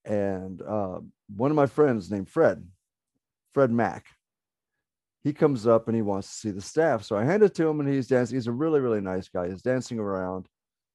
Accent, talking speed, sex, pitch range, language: American, 210 wpm, male, 105-130 Hz, English